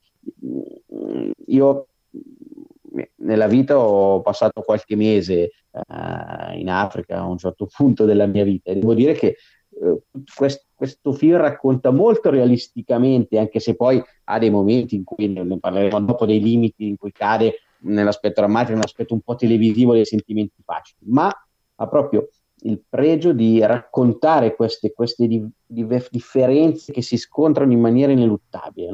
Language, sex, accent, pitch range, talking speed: Italian, male, native, 105-130 Hz, 140 wpm